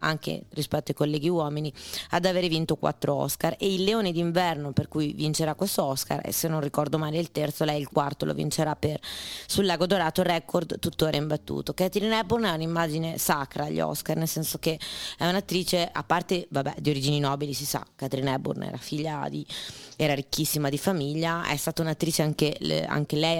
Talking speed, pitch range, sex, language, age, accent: 185 wpm, 150-175 Hz, female, Italian, 20-39, native